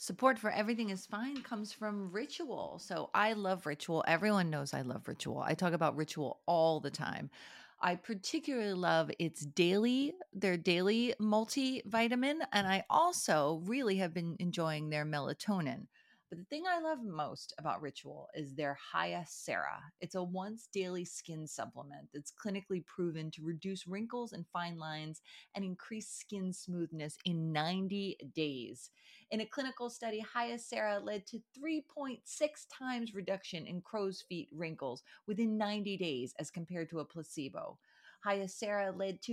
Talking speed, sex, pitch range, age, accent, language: 150 wpm, female, 175-270 Hz, 30-49, American, English